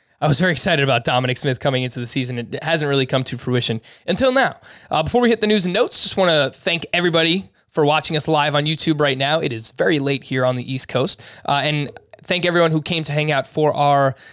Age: 20-39